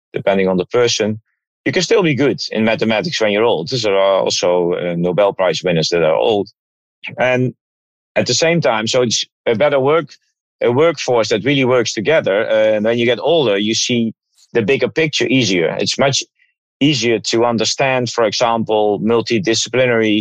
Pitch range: 110-130 Hz